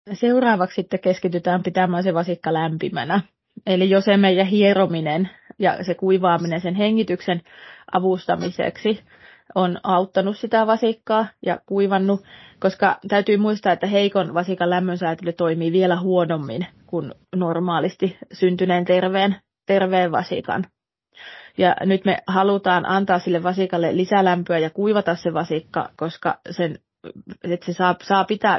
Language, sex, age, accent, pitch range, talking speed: Finnish, female, 20-39, native, 175-195 Hz, 125 wpm